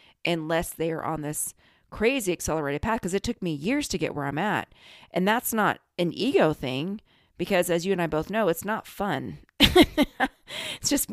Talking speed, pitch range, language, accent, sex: 195 wpm, 160-200 Hz, English, American, female